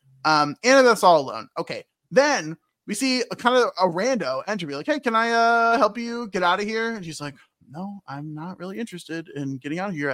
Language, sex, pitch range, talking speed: English, male, 150-240 Hz, 225 wpm